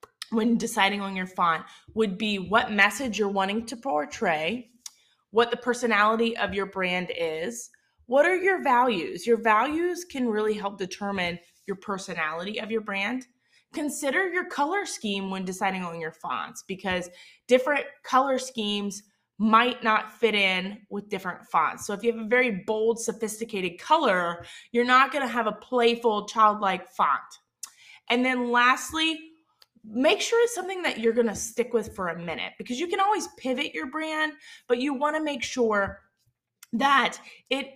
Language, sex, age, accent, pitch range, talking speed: English, female, 20-39, American, 200-245 Hz, 165 wpm